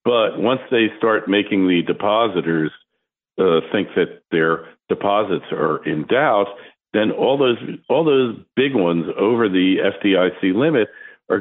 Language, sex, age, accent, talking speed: English, male, 50-69, American, 140 wpm